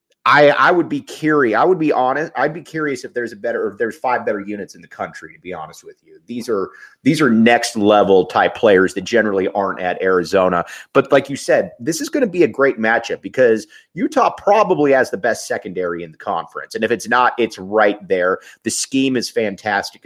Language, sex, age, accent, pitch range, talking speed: English, male, 30-49, American, 100-145 Hz, 225 wpm